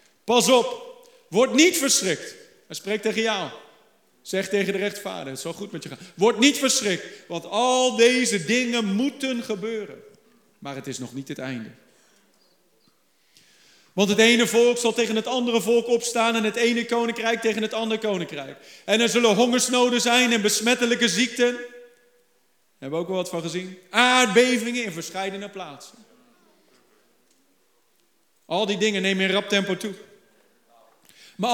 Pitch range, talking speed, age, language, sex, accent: 200-245 Hz, 155 wpm, 40-59, Dutch, male, Dutch